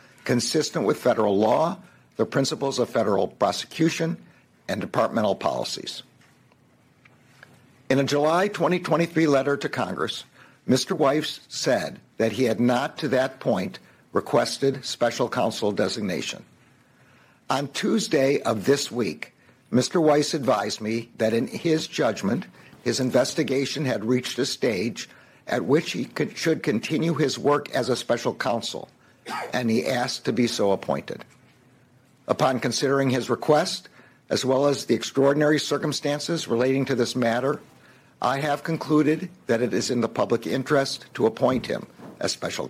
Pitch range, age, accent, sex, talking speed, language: 125-150 Hz, 60-79, American, male, 140 wpm, English